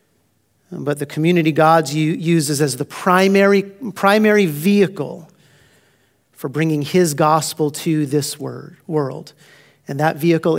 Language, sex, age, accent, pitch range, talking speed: English, male, 40-59, American, 155-215 Hz, 115 wpm